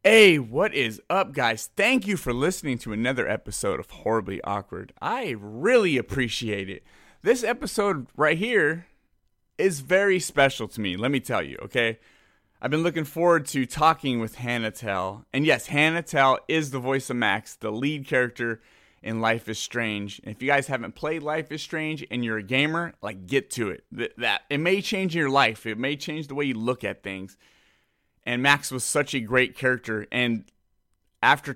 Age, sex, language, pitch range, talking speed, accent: 30-49, male, English, 115-160 Hz, 190 wpm, American